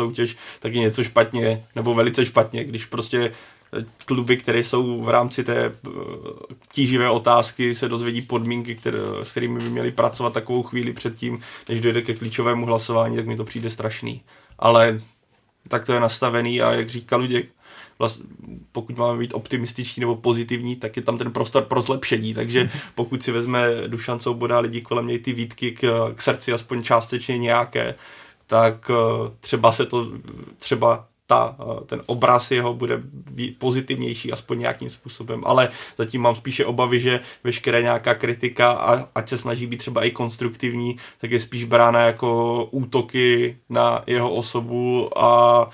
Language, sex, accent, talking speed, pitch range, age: Czech, male, native, 160 wpm, 115-125 Hz, 20-39